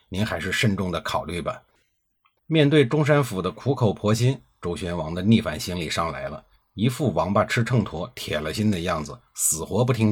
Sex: male